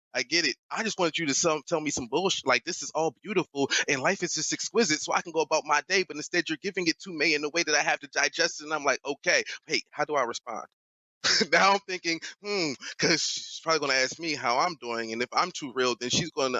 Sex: male